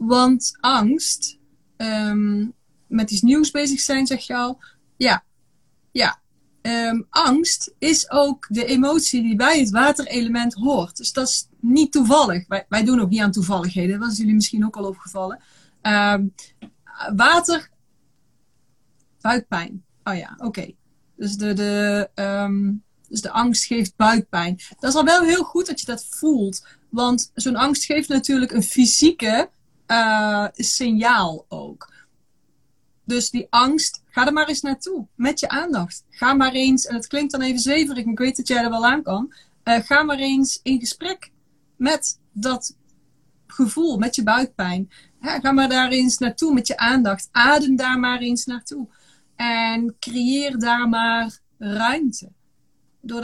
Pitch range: 215-270 Hz